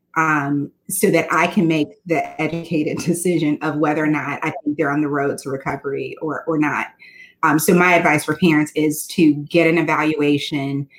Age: 30-49